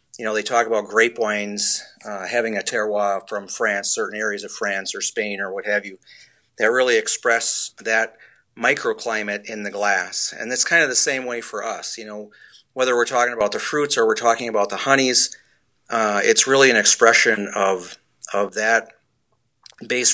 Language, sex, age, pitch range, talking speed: English, male, 40-59, 105-120 Hz, 190 wpm